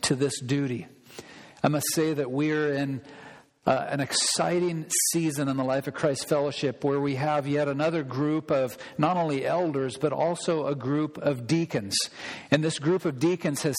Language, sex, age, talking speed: English, male, 50-69, 185 wpm